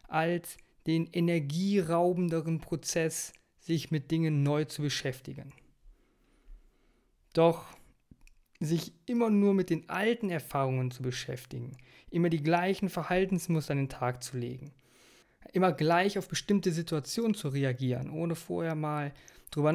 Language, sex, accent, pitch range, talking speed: German, male, German, 135-175 Hz, 120 wpm